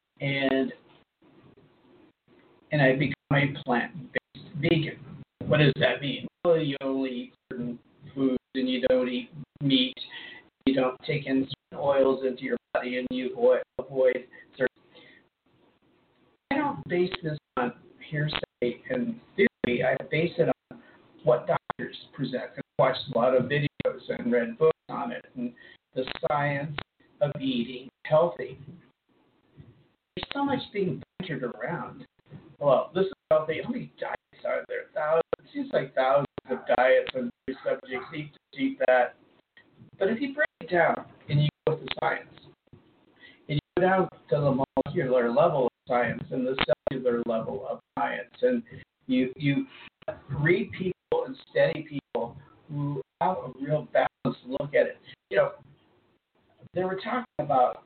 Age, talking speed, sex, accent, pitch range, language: 50-69, 150 wpm, male, American, 130-190 Hz, English